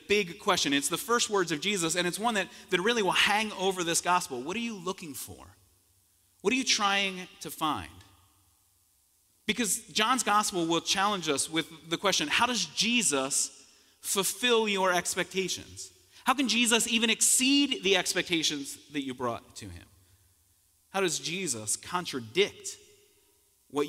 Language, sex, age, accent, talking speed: English, male, 30-49, American, 155 wpm